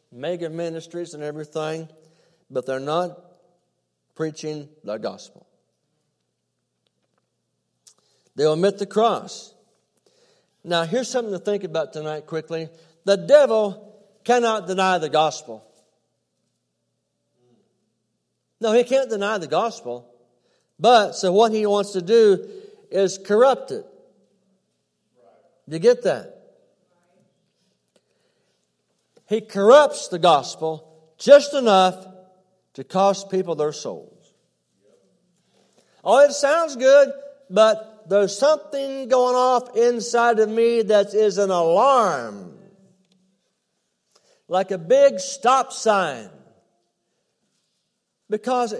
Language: English